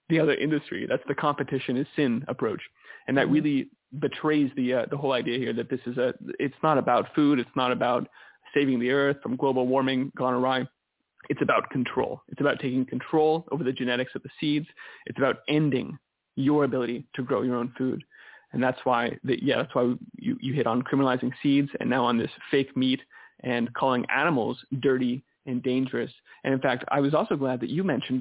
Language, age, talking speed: English, 20-39, 205 wpm